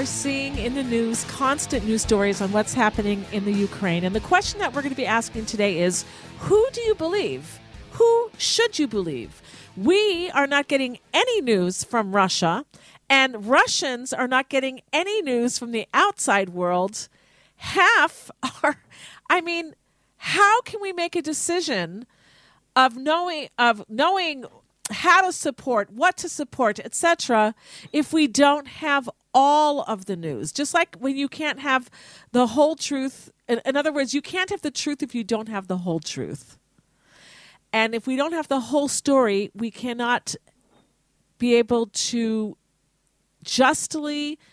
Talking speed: 160 wpm